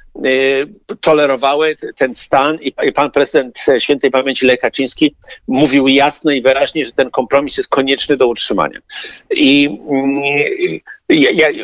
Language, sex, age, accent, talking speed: Polish, male, 50-69, native, 115 wpm